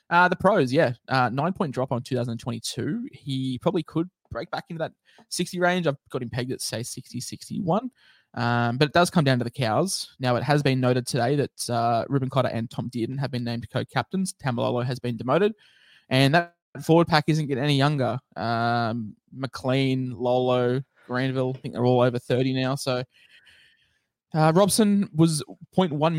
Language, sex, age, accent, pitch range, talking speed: English, male, 20-39, Australian, 120-145 Hz, 180 wpm